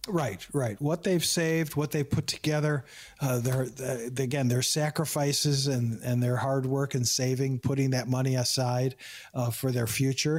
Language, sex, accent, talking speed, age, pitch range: English, male, American, 160 wpm, 50-69, 130-160 Hz